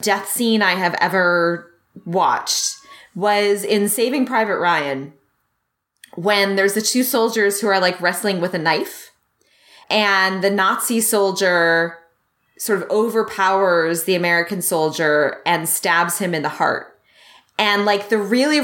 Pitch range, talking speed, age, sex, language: 180-230 Hz, 140 wpm, 20-39, female, English